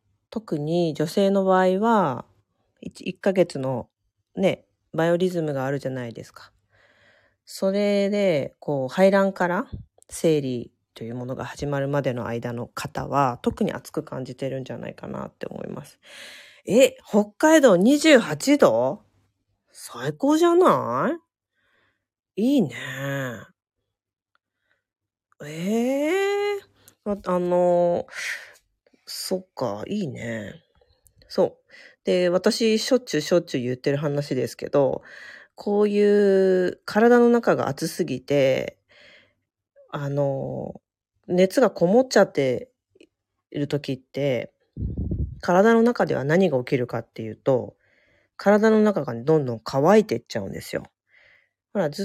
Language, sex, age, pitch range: Japanese, female, 40-59, 135-205 Hz